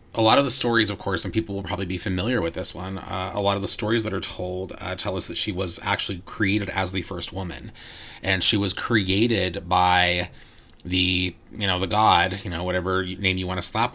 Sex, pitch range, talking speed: male, 90-105 Hz, 235 wpm